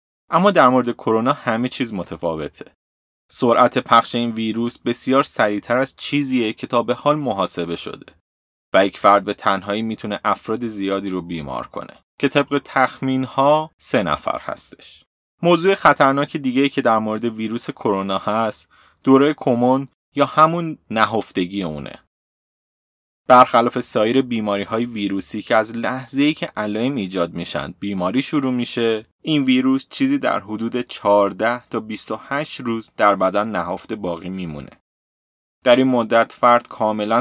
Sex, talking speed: male, 140 wpm